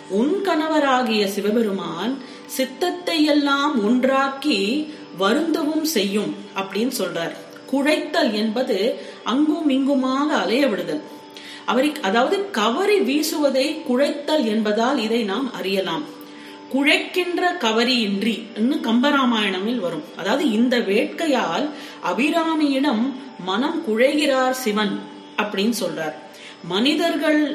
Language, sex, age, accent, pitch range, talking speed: Tamil, female, 40-59, native, 215-290 Hz, 85 wpm